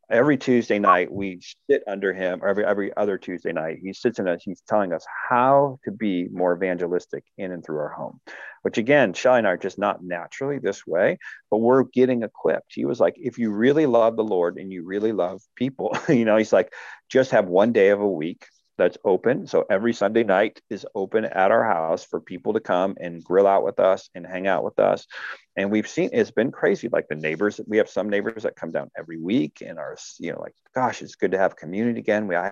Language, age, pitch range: English, 40-59, 95-125 Hz